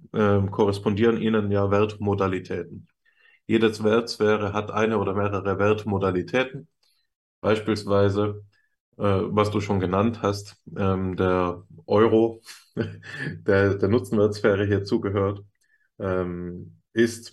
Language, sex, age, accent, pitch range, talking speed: German, male, 20-39, German, 95-110 Hz, 85 wpm